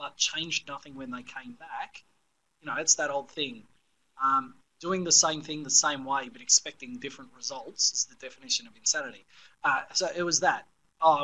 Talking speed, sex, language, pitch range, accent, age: 185 wpm, male, English, 135-190 Hz, Australian, 20-39